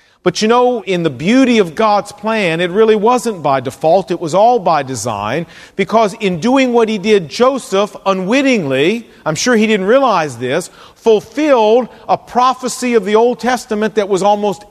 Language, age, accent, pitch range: English, 40-59, American, 165-235 Hz